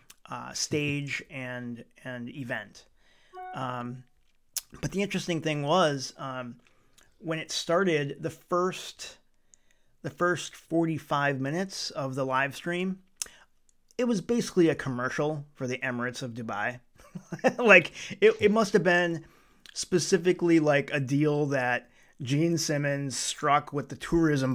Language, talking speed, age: English, 125 wpm, 30-49